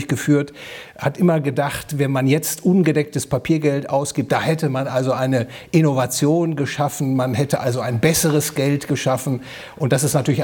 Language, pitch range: German, 125-145 Hz